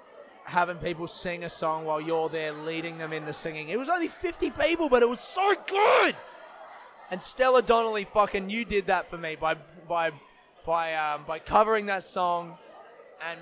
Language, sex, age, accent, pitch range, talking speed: English, male, 20-39, Australian, 155-205 Hz, 185 wpm